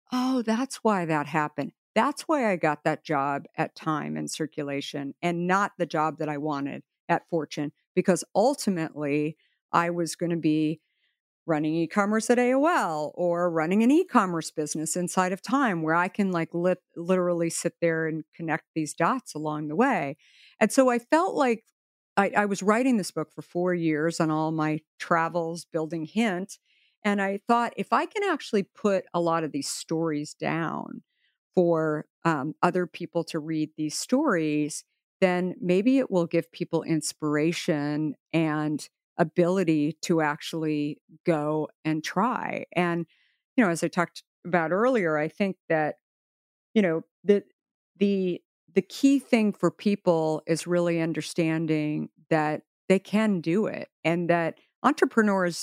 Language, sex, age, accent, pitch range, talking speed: English, female, 50-69, American, 155-200 Hz, 155 wpm